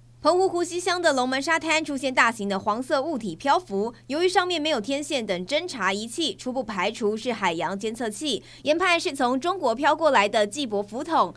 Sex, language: female, Chinese